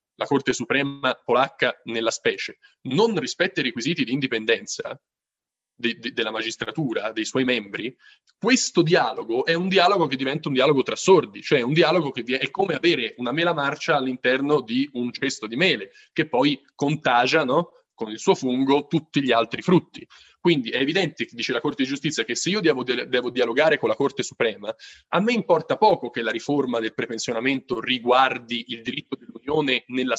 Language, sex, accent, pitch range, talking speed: Italian, male, native, 120-170 Hz, 175 wpm